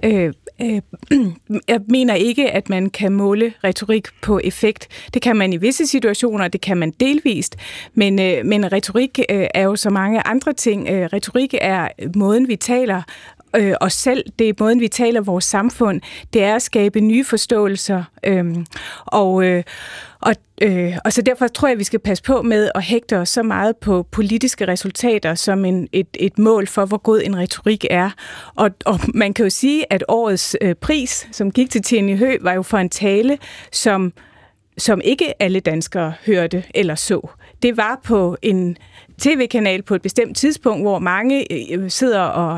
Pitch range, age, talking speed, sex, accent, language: 190-235 Hz, 30-49, 170 wpm, female, native, Danish